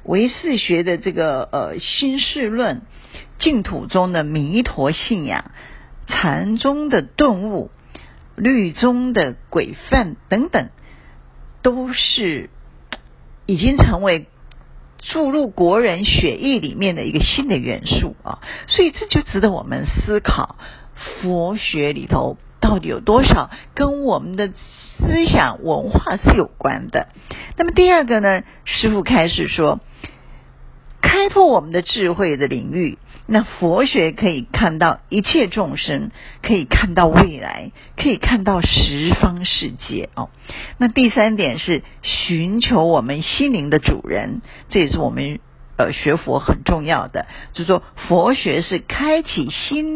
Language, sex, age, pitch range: Chinese, female, 50-69, 170-265 Hz